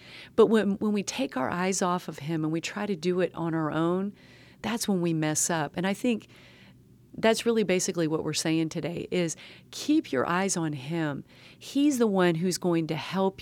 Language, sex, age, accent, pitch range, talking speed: English, female, 40-59, American, 170-255 Hz, 210 wpm